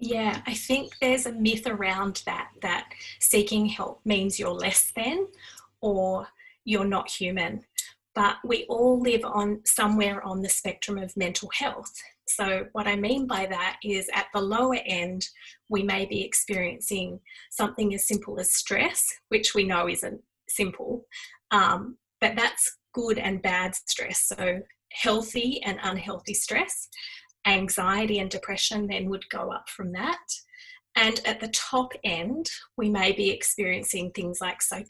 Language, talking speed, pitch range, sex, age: English, 150 wpm, 195-250 Hz, female, 20-39